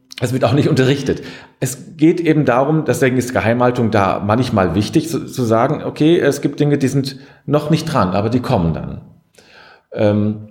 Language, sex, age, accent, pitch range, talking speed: German, male, 40-59, German, 105-140 Hz, 185 wpm